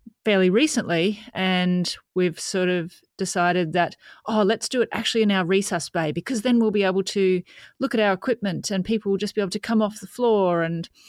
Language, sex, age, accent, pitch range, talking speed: English, female, 30-49, Australian, 175-205 Hz, 210 wpm